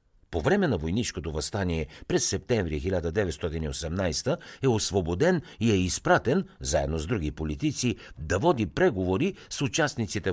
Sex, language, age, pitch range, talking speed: male, Bulgarian, 60-79, 80-110 Hz, 130 wpm